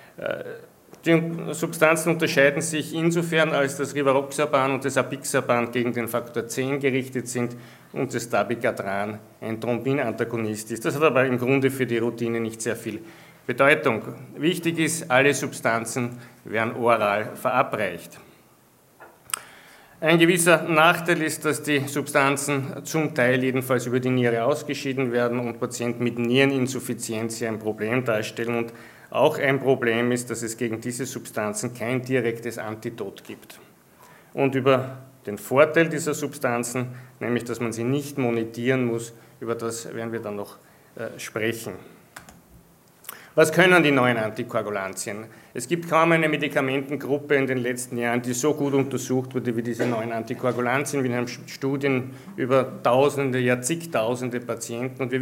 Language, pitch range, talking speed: German, 120-145 Hz, 145 wpm